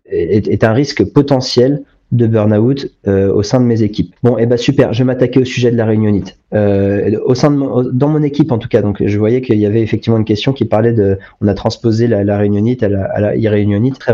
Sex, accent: male, French